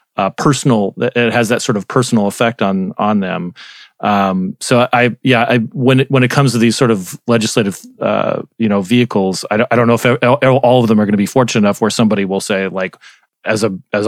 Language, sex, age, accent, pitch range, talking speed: English, male, 30-49, American, 100-130 Hz, 230 wpm